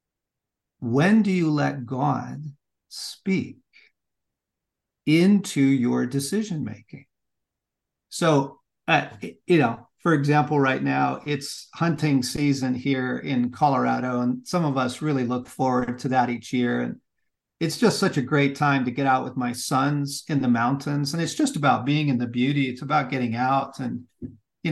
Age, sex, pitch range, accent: 50-69, male, 125-155 Hz, American